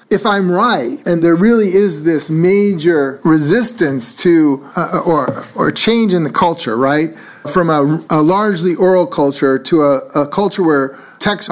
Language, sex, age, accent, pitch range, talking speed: English, male, 40-59, American, 155-200 Hz, 160 wpm